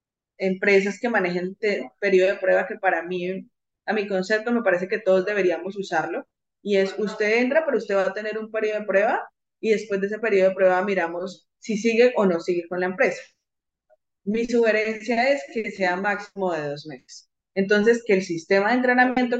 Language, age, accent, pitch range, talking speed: Spanish, 20-39, Colombian, 185-230 Hz, 190 wpm